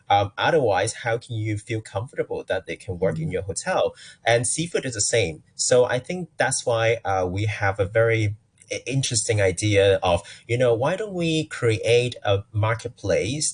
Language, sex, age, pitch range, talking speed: English, male, 30-49, 100-125 Hz, 175 wpm